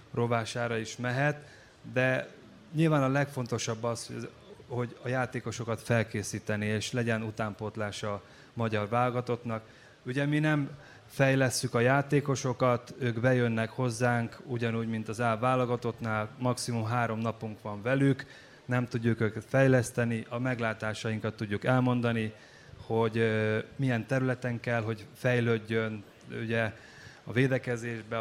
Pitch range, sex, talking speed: 110-125 Hz, male, 110 wpm